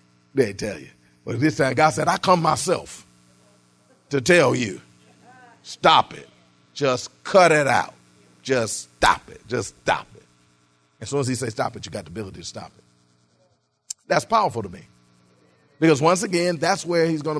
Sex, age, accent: male, 40-59, American